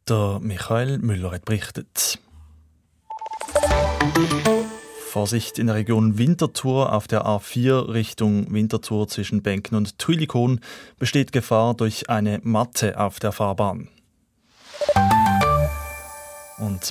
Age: 20-39